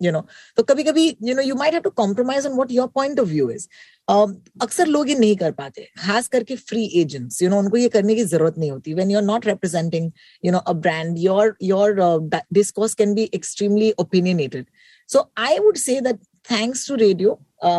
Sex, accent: female, native